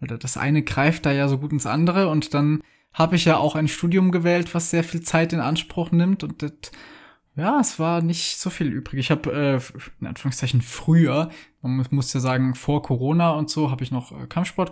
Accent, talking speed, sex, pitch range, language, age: German, 210 wpm, male, 130-160 Hz, German, 20-39